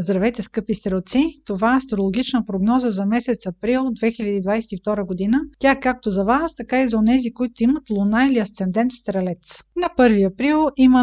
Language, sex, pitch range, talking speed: Bulgarian, female, 220-270 Hz, 170 wpm